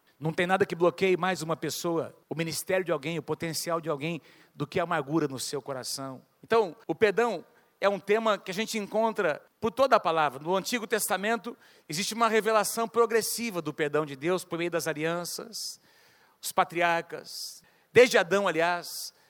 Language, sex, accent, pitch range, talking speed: Portuguese, male, Brazilian, 175-235 Hz, 175 wpm